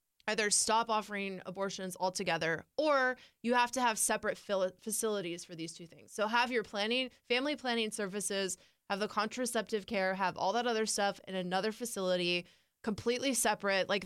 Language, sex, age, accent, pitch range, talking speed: English, female, 20-39, American, 185-225 Hz, 165 wpm